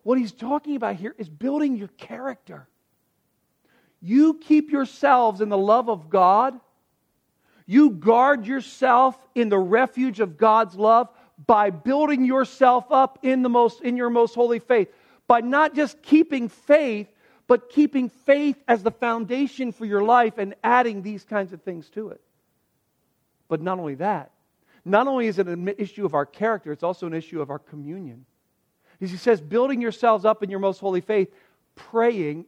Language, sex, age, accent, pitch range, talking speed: English, male, 50-69, American, 175-240 Hz, 165 wpm